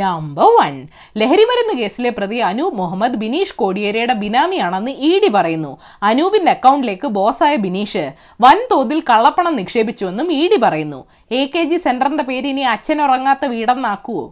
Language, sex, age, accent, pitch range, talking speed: Malayalam, female, 20-39, native, 205-320 Hz, 130 wpm